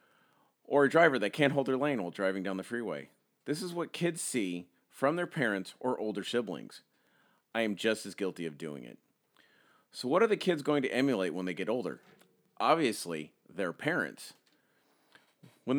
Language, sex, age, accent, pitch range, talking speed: English, male, 40-59, American, 100-140 Hz, 185 wpm